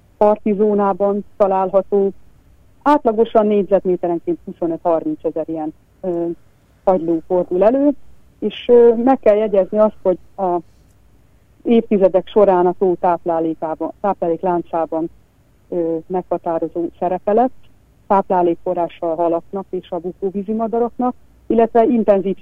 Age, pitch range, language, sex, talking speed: 40-59, 170-210 Hz, Hungarian, female, 95 wpm